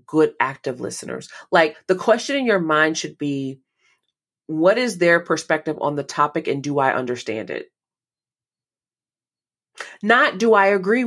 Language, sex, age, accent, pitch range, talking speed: English, female, 30-49, American, 145-180 Hz, 145 wpm